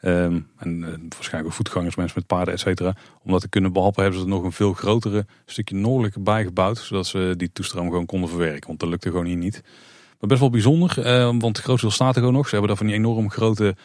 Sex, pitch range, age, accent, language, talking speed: male, 90-100 Hz, 30-49, Dutch, Dutch, 260 wpm